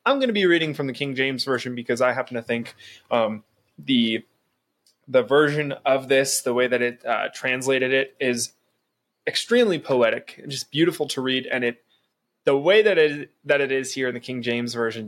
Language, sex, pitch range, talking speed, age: English, male, 125-150 Hz, 205 wpm, 20-39